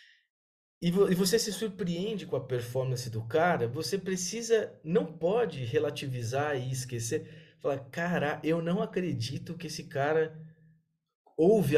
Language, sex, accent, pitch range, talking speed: Portuguese, male, Brazilian, 135-185 Hz, 125 wpm